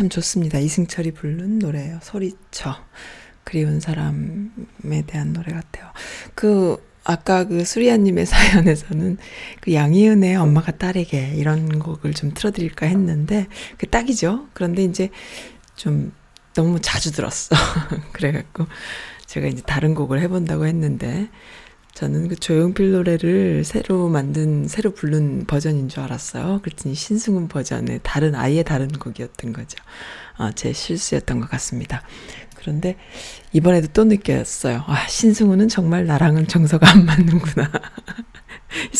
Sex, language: female, Korean